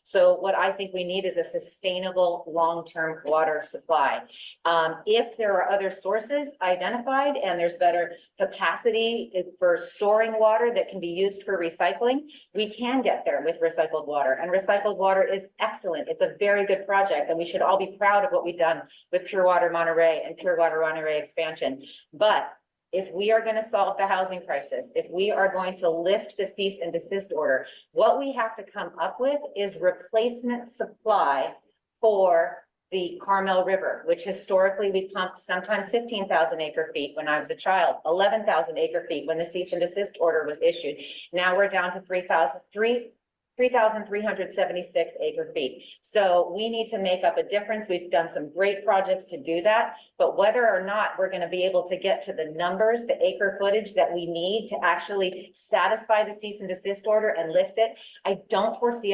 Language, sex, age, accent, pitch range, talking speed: English, female, 30-49, American, 175-220 Hz, 190 wpm